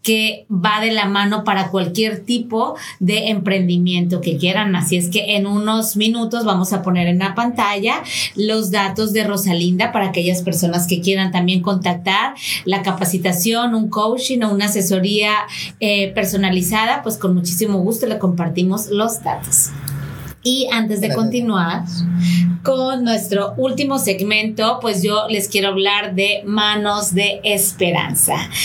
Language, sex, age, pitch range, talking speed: Spanish, female, 30-49, 190-225 Hz, 145 wpm